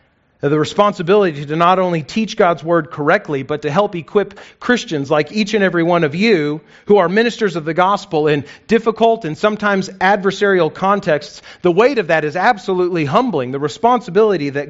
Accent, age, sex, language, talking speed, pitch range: American, 40-59, male, English, 175 wpm, 135-185 Hz